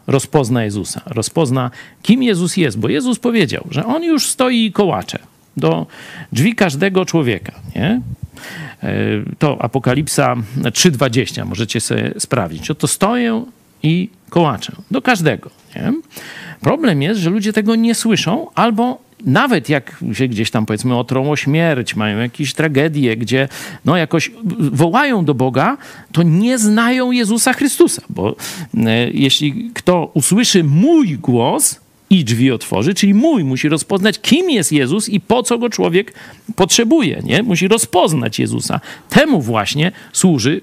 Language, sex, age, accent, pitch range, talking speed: Polish, male, 50-69, native, 135-225 Hz, 140 wpm